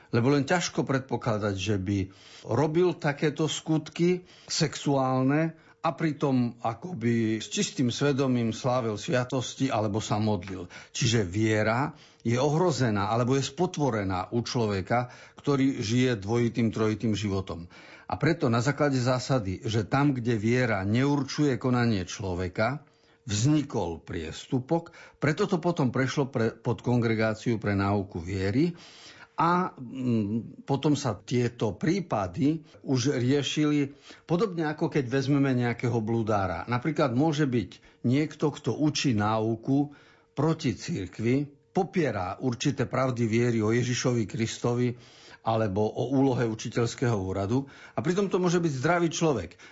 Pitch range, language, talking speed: 115-150 Hz, Slovak, 120 wpm